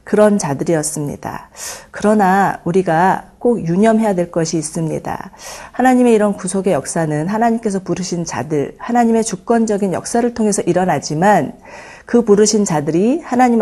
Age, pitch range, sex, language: 40-59, 170-220 Hz, female, Korean